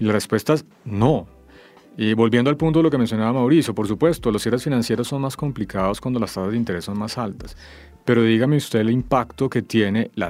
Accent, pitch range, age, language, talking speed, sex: Colombian, 100-125 Hz, 40-59, English, 220 wpm, male